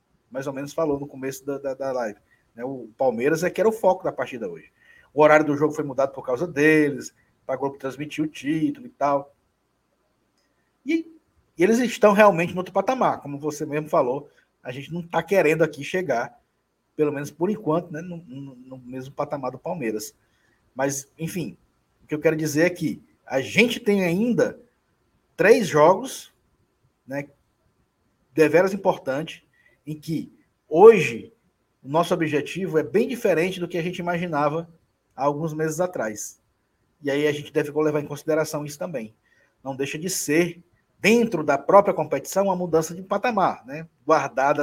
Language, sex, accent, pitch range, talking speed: Portuguese, male, Brazilian, 135-170 Hz, 170 wpm